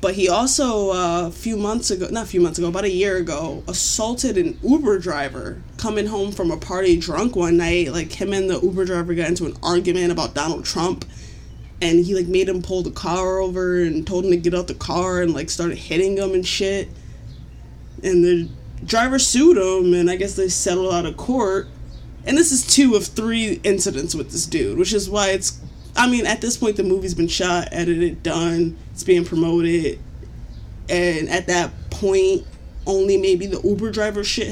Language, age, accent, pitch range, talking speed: English, 20-39, American, 170-210 Hz, 205 wpm